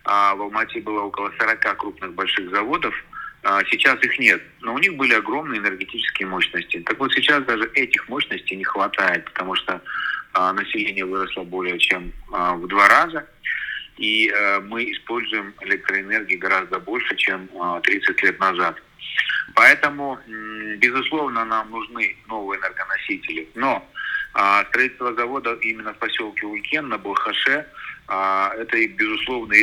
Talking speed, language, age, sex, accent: 130 wpm, Russian, 30-49, male, native